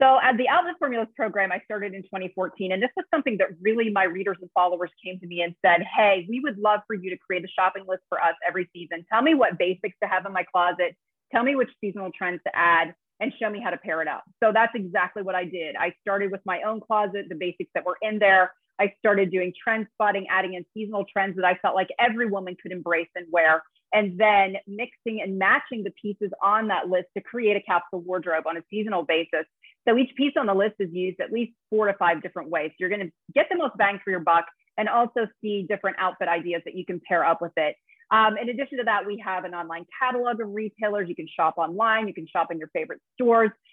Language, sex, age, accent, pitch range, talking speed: English, female, 30-49, American, 180-220 Hz, 250 wpm